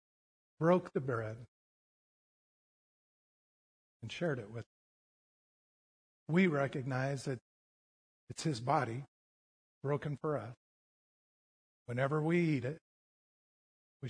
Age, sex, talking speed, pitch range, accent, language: 50-69, male, 95 wpm, 120-160 Hz, American, English